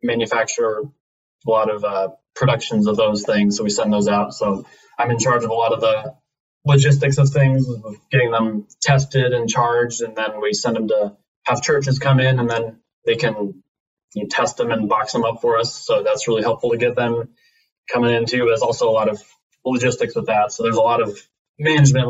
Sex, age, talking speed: male, 20-39, 215 wpm